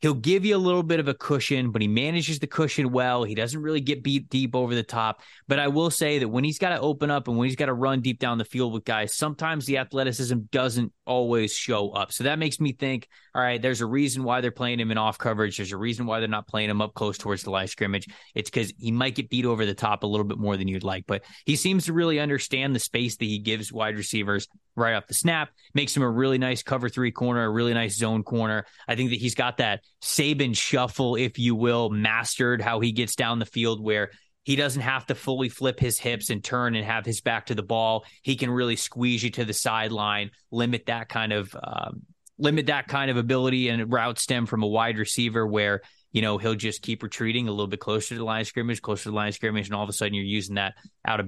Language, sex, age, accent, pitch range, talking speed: English, male, 20-39, American, 105-130 Hz, 260 wpm